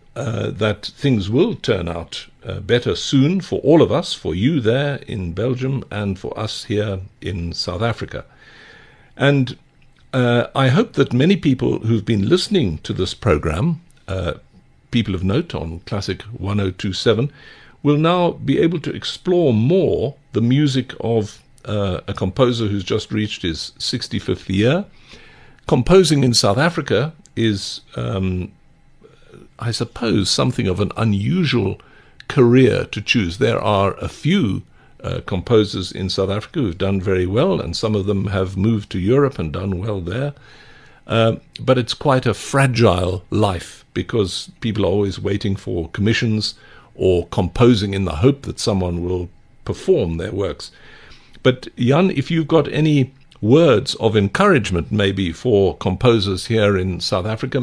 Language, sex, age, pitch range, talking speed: English, male, 60-79, 95-130 Hz, 150 wpm